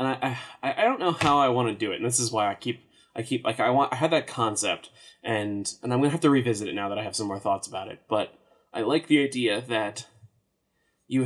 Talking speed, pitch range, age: 275 wpm, 105-120 Hz, 20-39